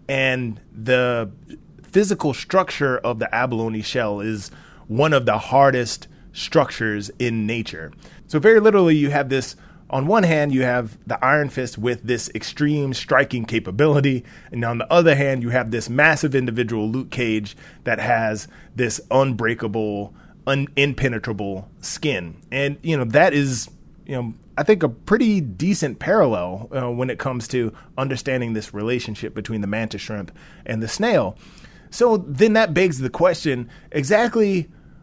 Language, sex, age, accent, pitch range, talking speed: English, male, 30-49, American, 115-160 Hz, 150 wpm